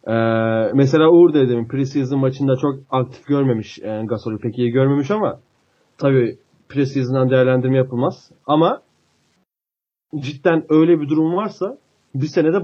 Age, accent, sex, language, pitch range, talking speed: 30-49, native, male, Turkish, 130-175 Hz, 130 wpm